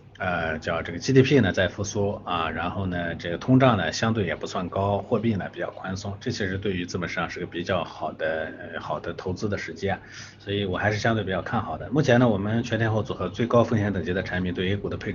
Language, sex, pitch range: Chinese, male, 95-125 Hz